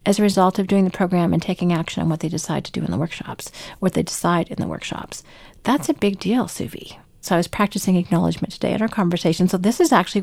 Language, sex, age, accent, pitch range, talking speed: English, female, 40-59, American, 185-230 Hz, 250 wpm